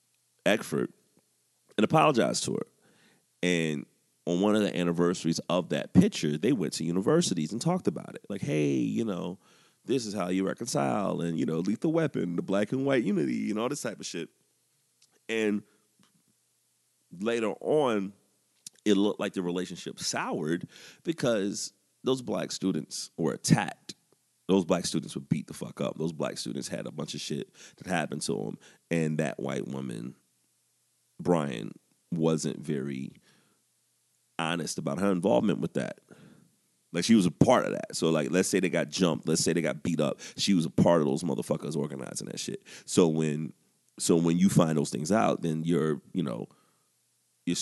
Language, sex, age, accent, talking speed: English, male, 30-49, American, 175 wpm